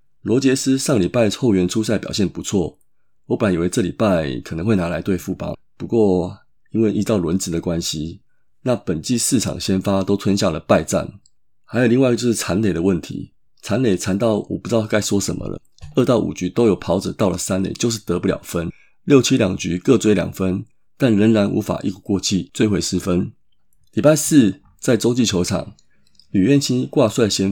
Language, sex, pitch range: Chinese, male, 95-115 Hz